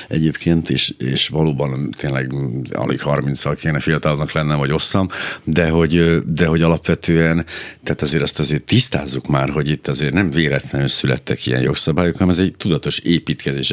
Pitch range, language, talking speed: 75-85 Hz, Hungarian, 160 wpm